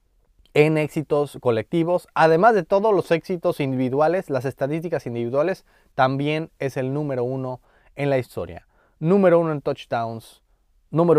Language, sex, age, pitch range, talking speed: Spanish, male, 30-49, 125-180 Hz, 135 wpm